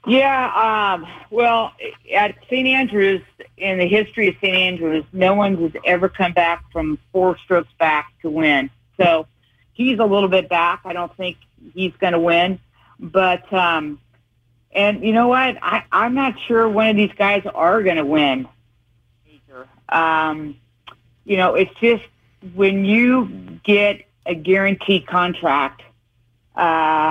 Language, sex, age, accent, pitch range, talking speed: English, female, 50-69, American, 160-195 Hz, 150 wpm